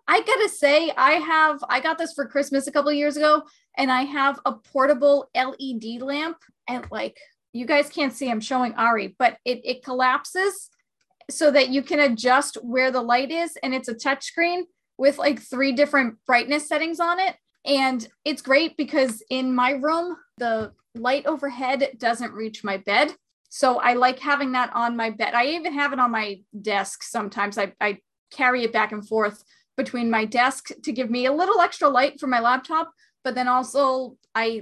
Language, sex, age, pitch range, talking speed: English, female, 30-49, 230-285 Hz, 190 wpm